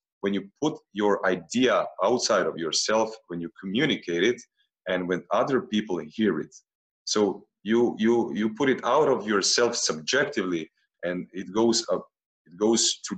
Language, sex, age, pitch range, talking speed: Croatian, male, 30-49, 90-115 Hz, 160 wpm